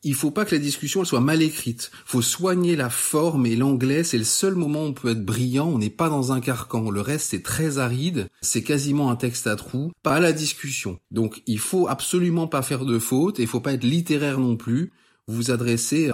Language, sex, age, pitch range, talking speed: French, male, 30-49, 120-155 Hz, 235 wpm